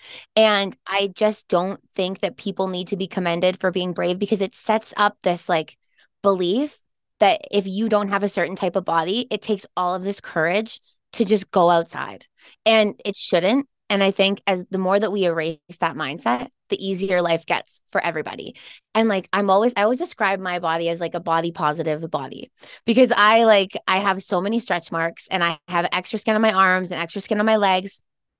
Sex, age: female, 20-39